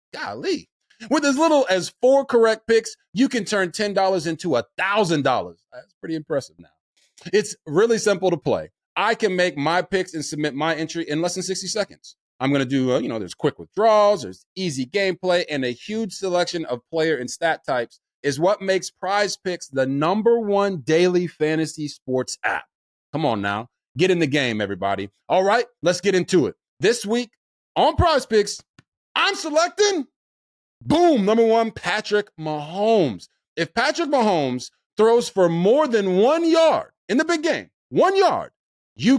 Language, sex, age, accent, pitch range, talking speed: English, male, 30-49, American, 155-230 Hz, 180 wpm